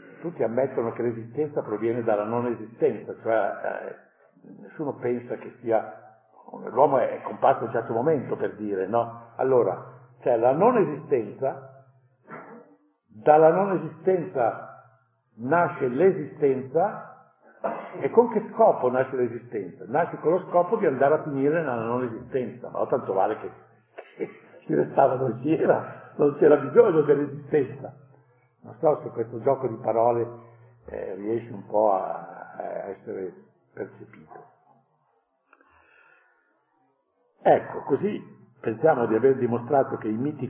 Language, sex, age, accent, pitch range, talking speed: Italian, male, 50-69, native, 115-150 Hz, 125 wpm